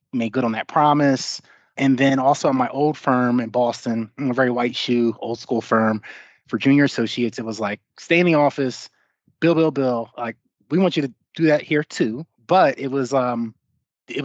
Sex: male